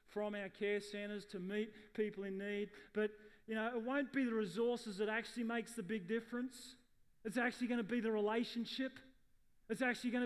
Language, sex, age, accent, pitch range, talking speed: English, male, 30-49, Australian, 205-240 Hz, 195 wpm